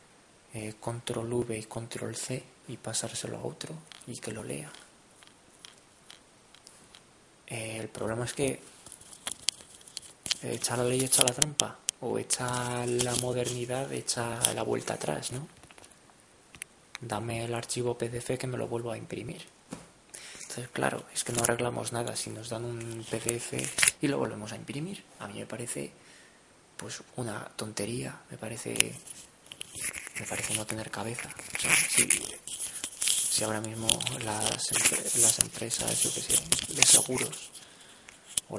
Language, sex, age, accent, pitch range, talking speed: Spanish, male, 20-39, Spanish, 105-120 Hz, 140 wpm